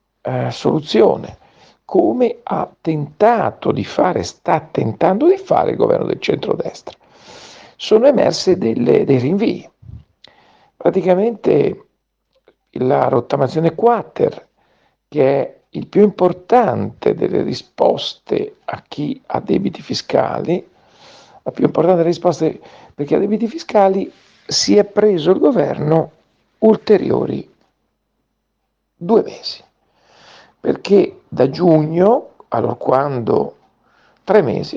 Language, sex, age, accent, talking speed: Italian, male, 50-69, native, 105 wpm